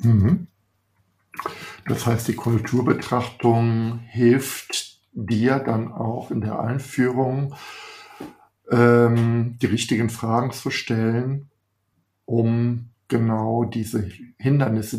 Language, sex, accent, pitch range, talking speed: German, male, German, 110-120 Hz, 80 wpm